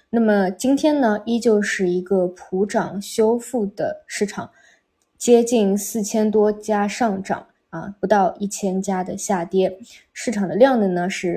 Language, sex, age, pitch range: Chinese, female, 20-39, 185-215 Hz